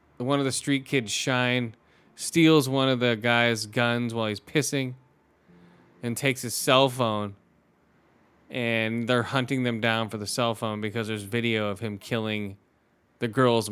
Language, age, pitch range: English, 20-39, 110-130 Hz